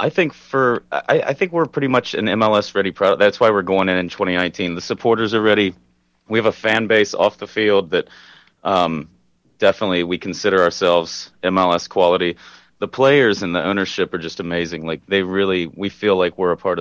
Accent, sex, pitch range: American, male, 85-100 Hz